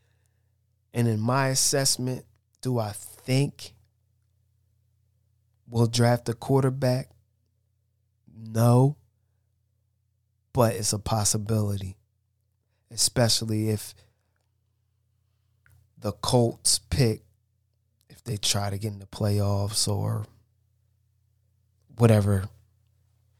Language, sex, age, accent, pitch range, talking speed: English, male, 20-39, American, 105-115 Hz, 80 wpm